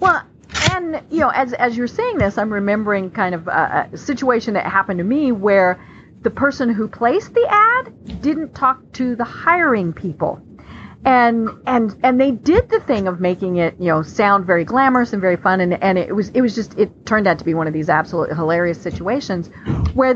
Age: 40-59